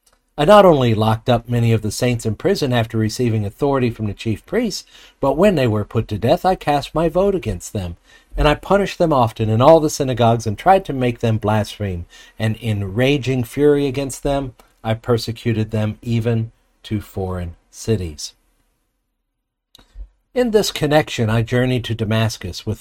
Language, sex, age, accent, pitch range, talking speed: English, male, 50-69, American, 110-145 Hz, 175 wpm